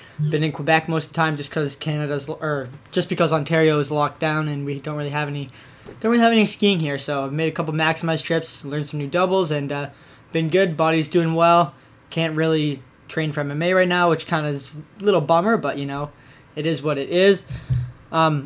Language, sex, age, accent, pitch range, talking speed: English, male, 10-29, American, 150-175 Hz, 230 wpm